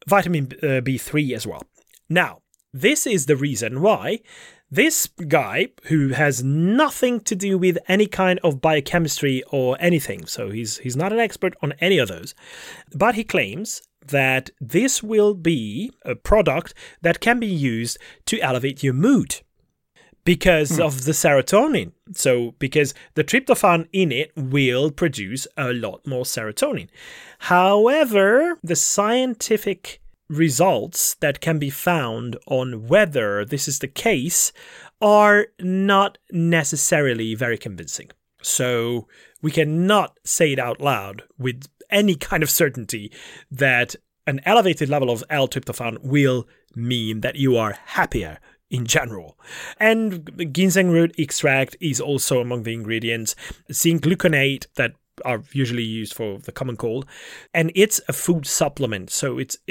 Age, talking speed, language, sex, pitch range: 30-49, 140 wpm, English, male, 130-185 Hz